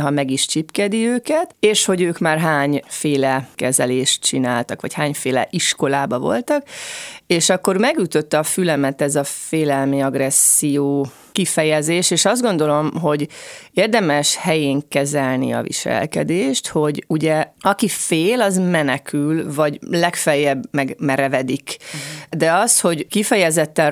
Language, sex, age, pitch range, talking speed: Hungarian, female, 30-49, 145-180 Hz, 125 wpm